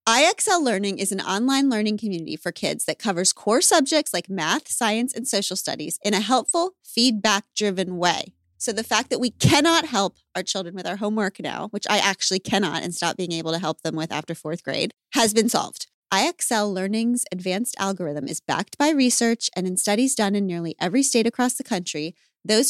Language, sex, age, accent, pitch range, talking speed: English, female, 30-49, American, 170-230 Hz, 200 wpm